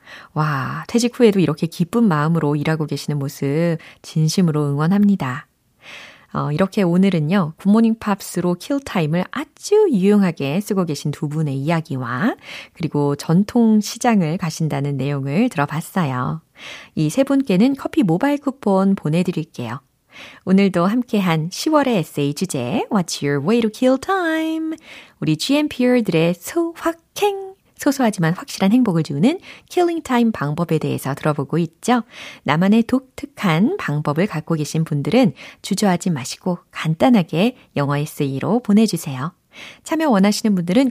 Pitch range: 155-250 Hz